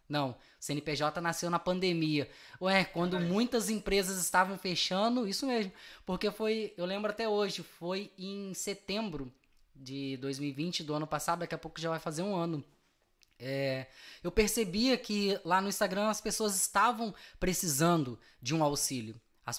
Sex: female